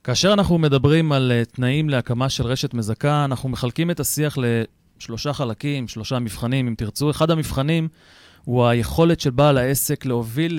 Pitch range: 120-155 Hz